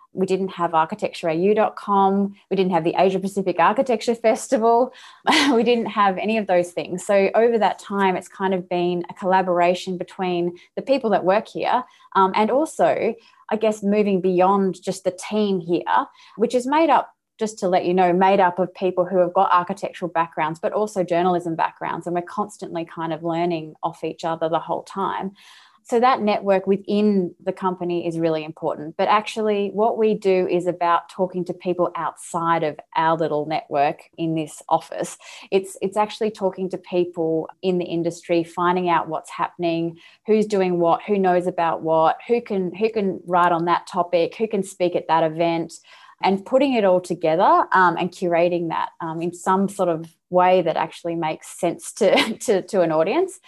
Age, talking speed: 20-39, 185 wpm